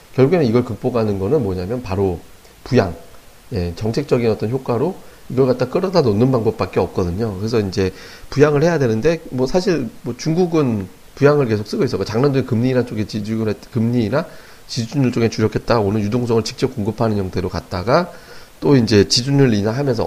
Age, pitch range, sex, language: 40-59, 100-130 Hz, male, Korean